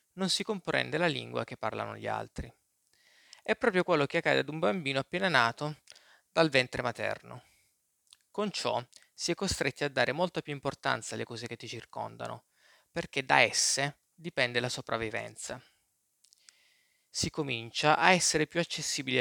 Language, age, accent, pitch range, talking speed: Italian, 20-39, native, 125-165 Hz, 155 wpm